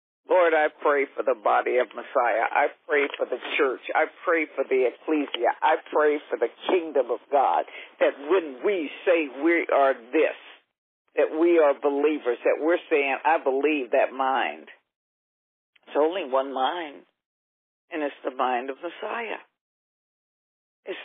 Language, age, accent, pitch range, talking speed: English, 60-79, American, 135-195 Hz, 155 wpm